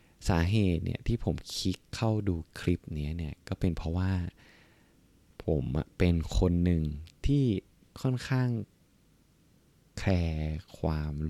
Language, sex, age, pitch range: Thai, male, 20-39, 80-105 Hz